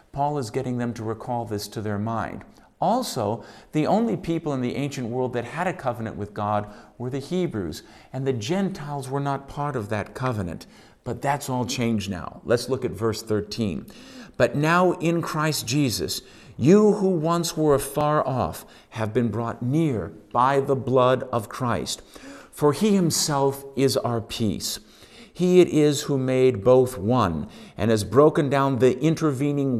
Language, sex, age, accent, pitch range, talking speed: English, male, 50-69, American, 115-150 Hz, 170 wpm